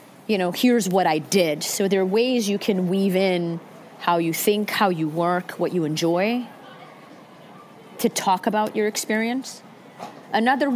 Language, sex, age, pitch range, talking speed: Amharic, female, 30-49, 175-220 Hz, 160 wpm